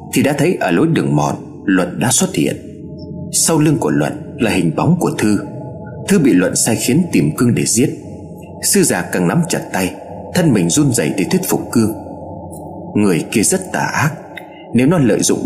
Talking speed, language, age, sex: 200 wpm, Vietnamese, 30-49, male